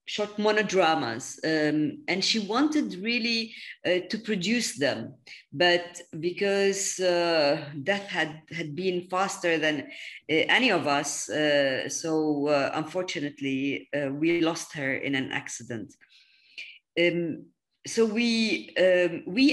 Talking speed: 125 wpm